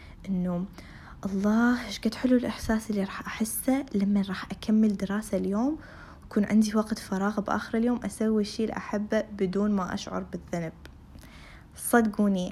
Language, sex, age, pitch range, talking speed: Arabic, female, 20-39, 190-220 Hz, 130 wpm